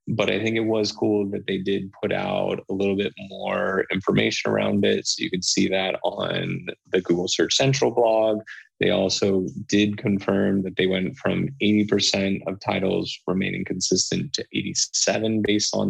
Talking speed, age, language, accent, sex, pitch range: 175 wpm, 20-39, English, American, male, 100-110 Hz